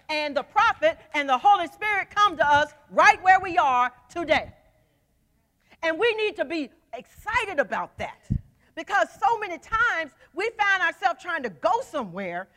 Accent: American